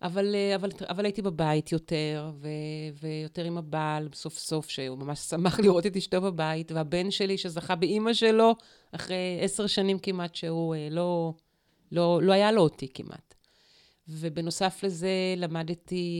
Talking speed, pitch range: 145 wpm, 160-195 Hz